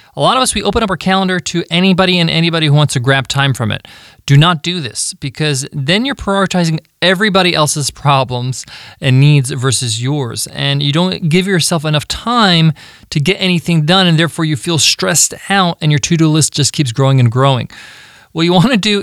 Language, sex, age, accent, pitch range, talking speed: English, male, 20-39, American, 140-180 Hz, 210 wpm